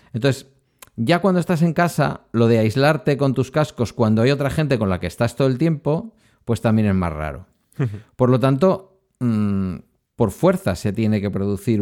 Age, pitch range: 50-69, 110-140 Hz